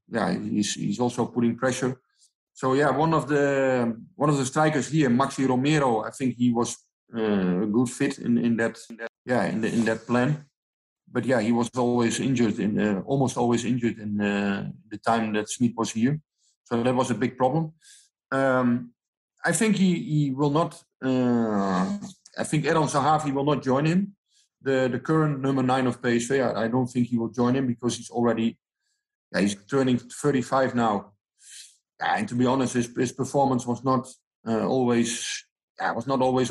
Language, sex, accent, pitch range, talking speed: English, male, Dutch, 115-140 Hz, 190 wpm